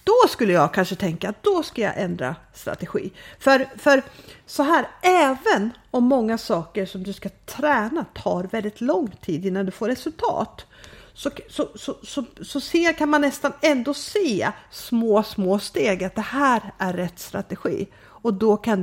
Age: 50-69